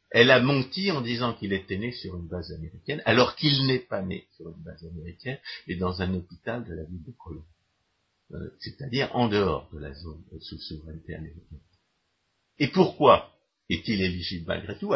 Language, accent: French, French